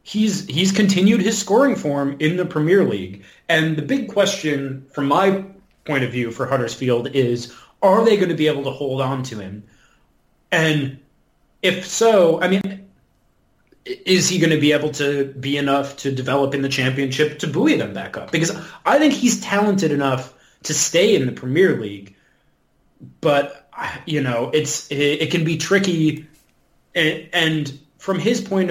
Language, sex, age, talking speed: English, male, 30-49, 170 wpm